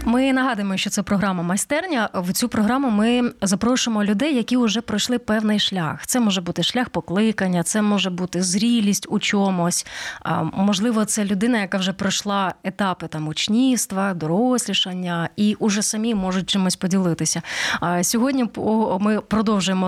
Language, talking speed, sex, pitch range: Ukrainian, 140 wpm, female, 190-240 Hz